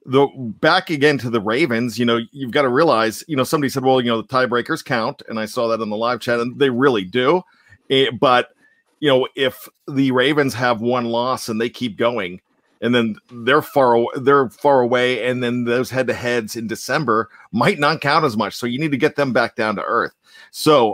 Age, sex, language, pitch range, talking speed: 40-59, male, English, 120-150 Hz, 225 wpm